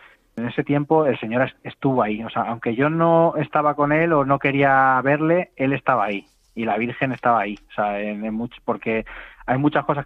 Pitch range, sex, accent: 110-140 Hz, male, Spanish